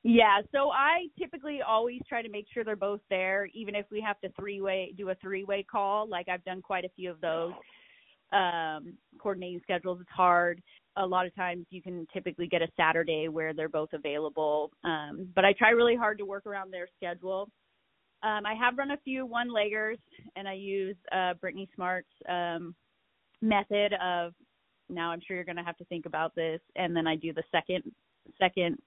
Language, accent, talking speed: English, American, 195 wpm